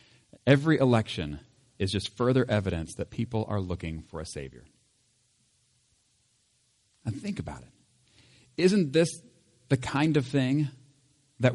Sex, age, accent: male, 40-59, American